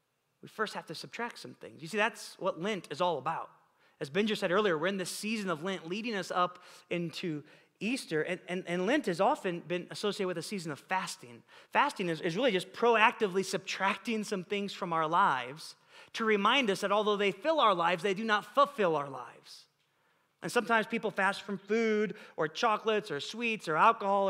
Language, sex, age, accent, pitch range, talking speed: English, male, 30-49, American, 175-225 Hz, 200 wpm